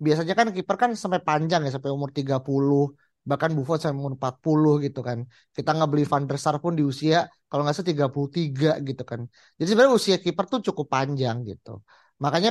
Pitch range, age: 140-175 Hz, 30-49